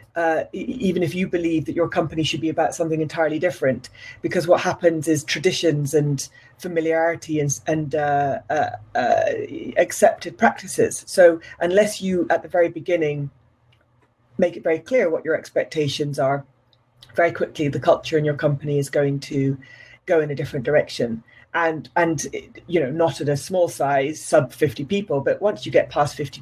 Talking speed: 175 wpm